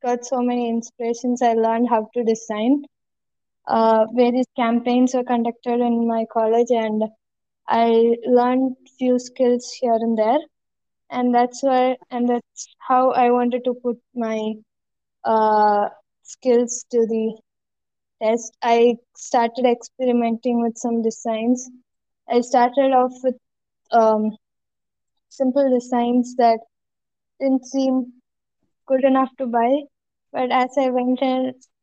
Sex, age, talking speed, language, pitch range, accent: female, 20-39, 125 wpm, English, 230-255 Hz, Indian